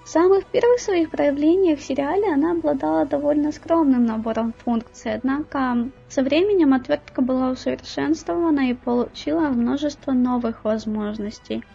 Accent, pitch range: native, 245-295 Hz